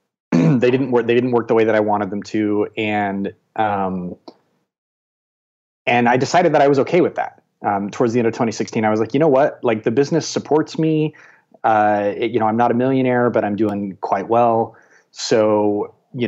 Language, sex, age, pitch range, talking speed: English, male, 30-49, 105-125 Hz, 210 wpm